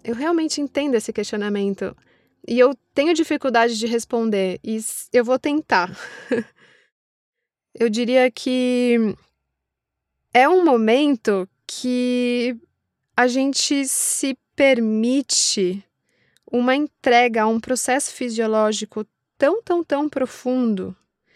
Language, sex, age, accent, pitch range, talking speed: Portuguese, female, 20-39, Brazilian, 215-280 Hz, 100 wpm